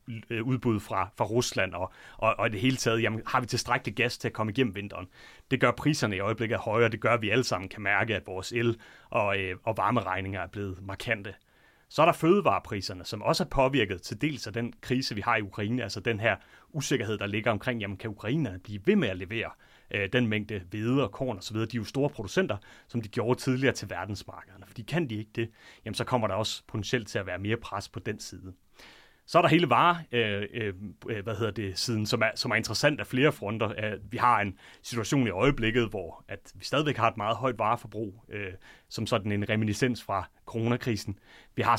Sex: male